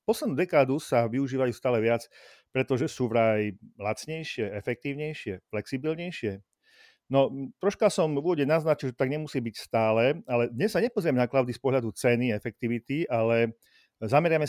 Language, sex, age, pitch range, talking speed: Slovak, male, 40-59, 120-145 Hz, 150 wpm